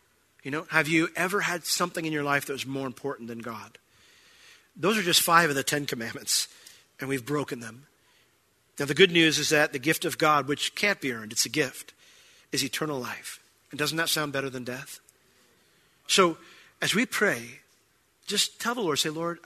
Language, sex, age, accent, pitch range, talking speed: English, male, 40-59, American, 135-170 Hz, 200 wpm